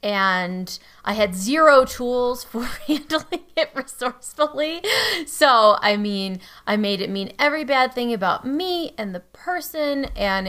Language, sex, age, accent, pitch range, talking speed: English, female, 20-39, American, 195-250 Hz, 145 wpm